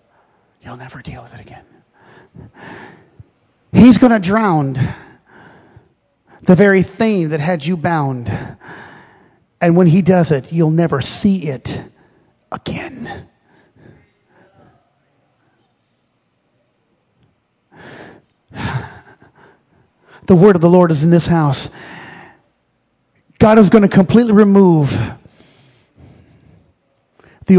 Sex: male